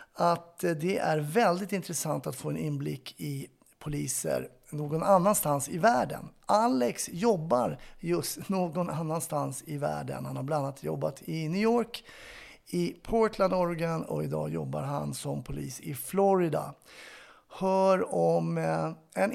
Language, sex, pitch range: Swedish, male, 140-190 Hz